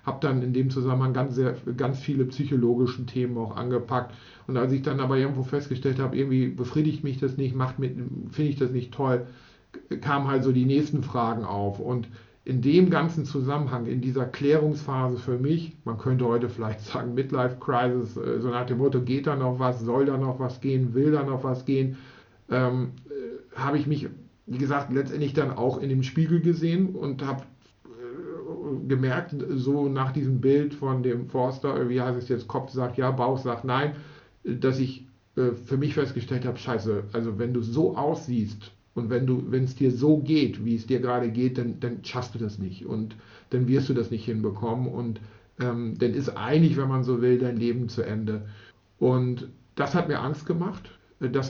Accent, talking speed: German, 190 wpm